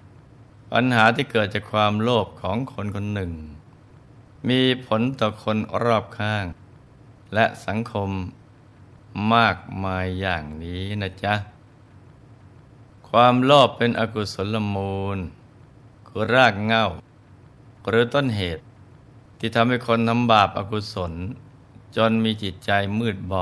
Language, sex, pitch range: Thai, male, 100-120 Hz